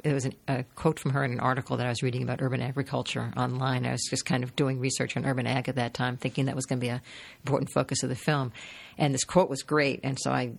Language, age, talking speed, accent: English, 50-69, 290 wpm, American